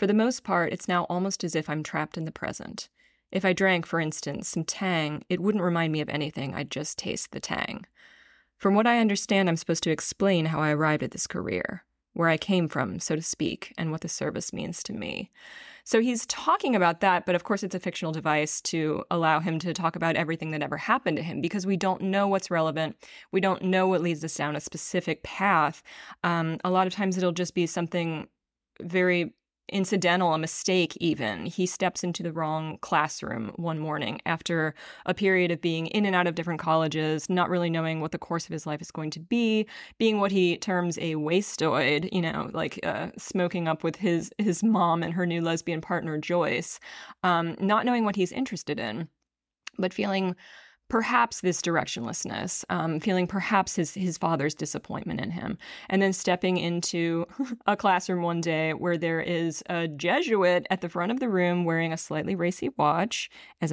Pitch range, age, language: 160-195 Hz, 20-39, English